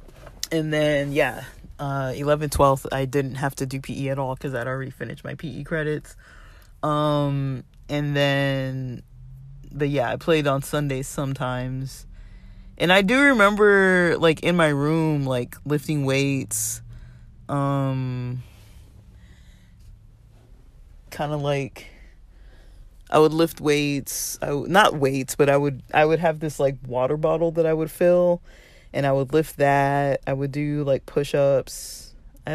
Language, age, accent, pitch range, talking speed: English, 30-49, American, 130-150 Hz, 150 wpm